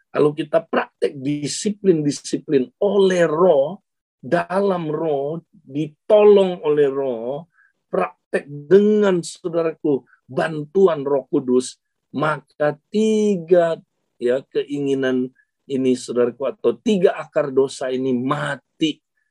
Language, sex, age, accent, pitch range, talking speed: Indonesian, male, 50-69, native, 130-195 Hz, 90 wpm